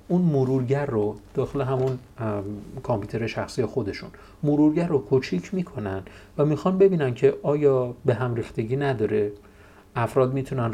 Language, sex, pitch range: Persian, male, 105-145 Hz